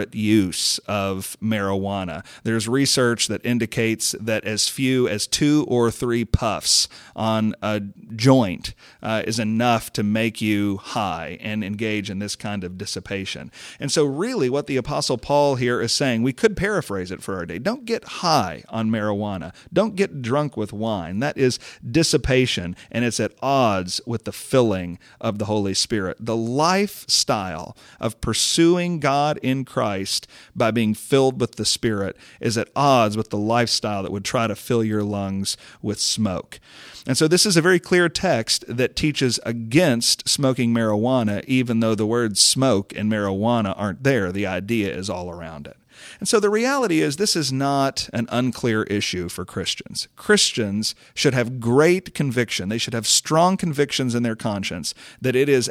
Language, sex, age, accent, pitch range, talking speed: English, male, 40-59, American, 105-130 Hz, 170 wpm